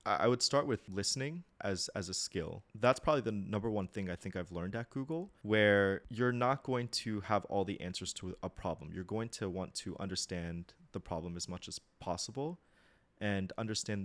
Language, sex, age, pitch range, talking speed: English, male, 20-39, 90-115 Hz, 200 wpm